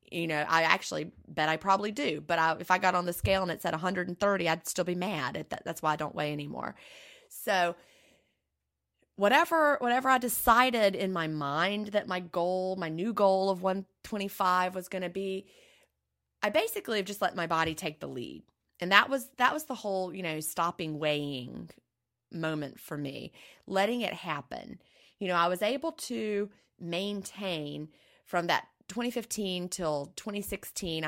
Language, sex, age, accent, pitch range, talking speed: English, female, 30-49, American, 155-195 Hz, 170 wpm